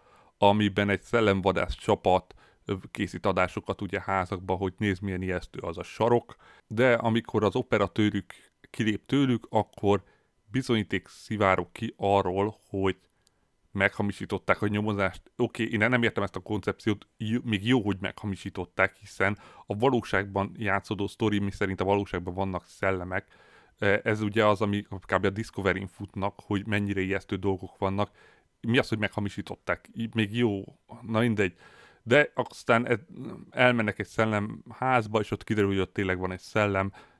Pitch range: 95-110 Hz